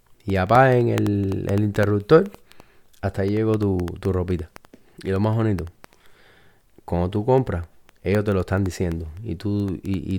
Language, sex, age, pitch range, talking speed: Spanish, male, 30-49, 90-110 Hz, 160 wpm